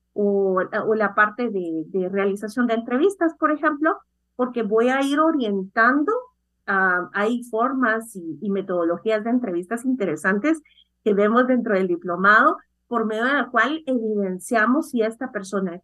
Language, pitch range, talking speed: Spanish, 190-255 Hz, 150 wpm